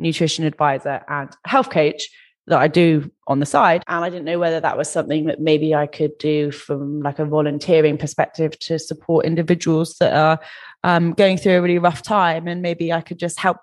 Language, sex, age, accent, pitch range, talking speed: English, female, 20-39, British, 150-175 Hz, 205 wpm